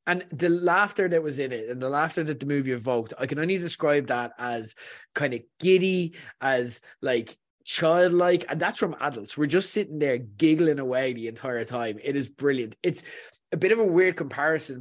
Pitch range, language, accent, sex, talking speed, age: 130-165 Hz, English, Irish, male, 200 wpm, 20-39